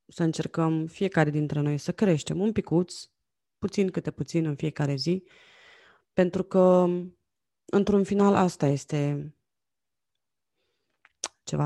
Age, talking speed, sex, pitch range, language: 20-39, 115 wpm, female, 150-195 Hz, Romanian